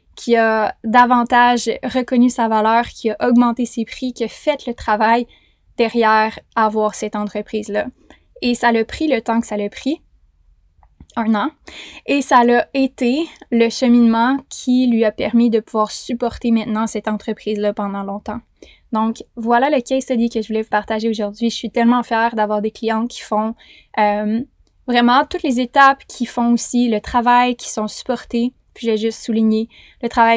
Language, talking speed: French, 175 wpm